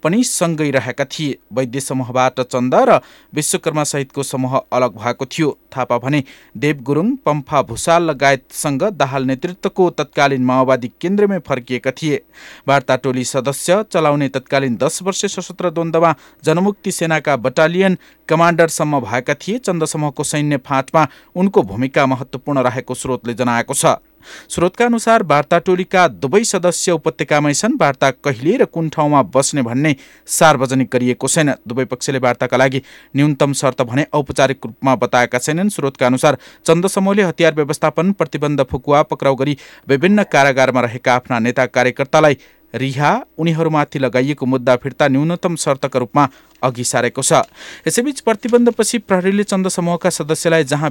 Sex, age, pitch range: male, 50-69, 130-165 Hz